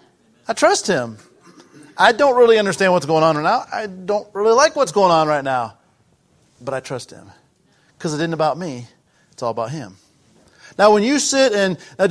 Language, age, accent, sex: English, 40-59, American, male